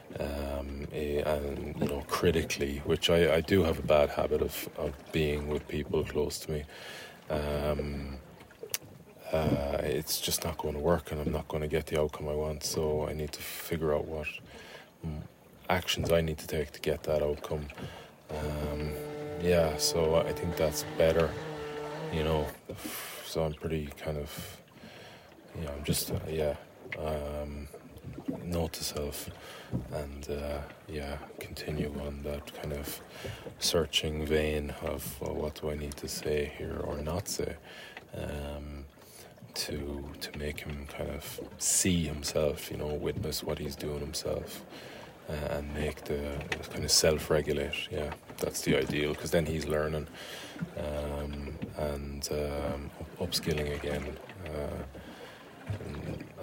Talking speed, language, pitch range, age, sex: 145 wpm, English, 75-80 Hz, 20-39, male